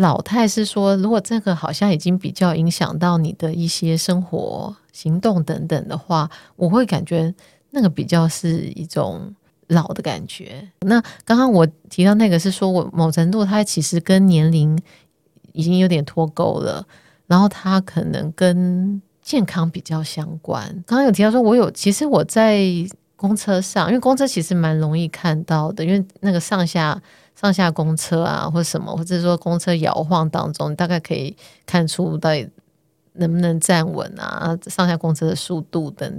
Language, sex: Chinese, female